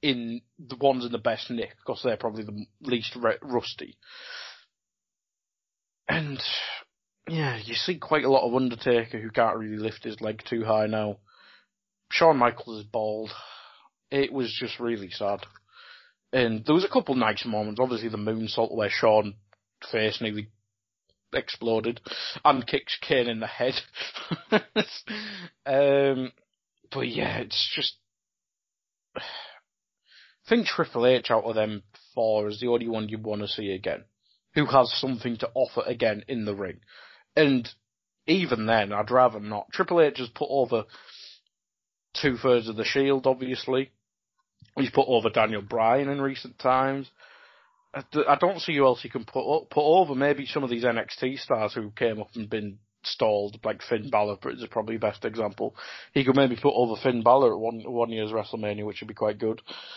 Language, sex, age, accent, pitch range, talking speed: English, male, 20-39, British, 110-140 Hz, 165 wpm